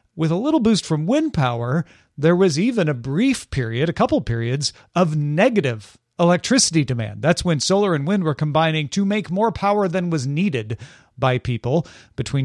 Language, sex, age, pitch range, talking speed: English, male, 40-59, 140-185 Hz, 180 wpm